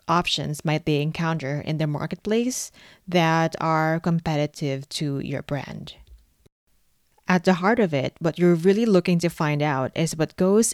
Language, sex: English, female